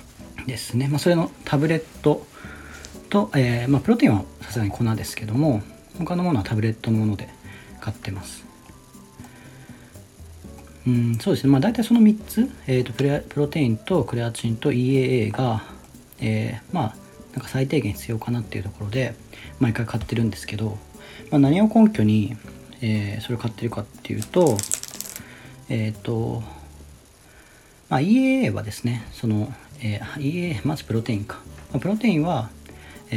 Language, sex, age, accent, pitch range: Japanese, male, 40-59, native, 105-140 Hz